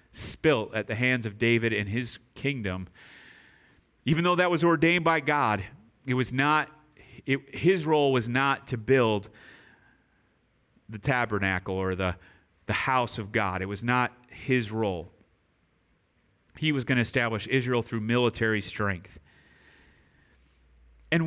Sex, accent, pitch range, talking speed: male, American, 110-155 Hz, 140 wpm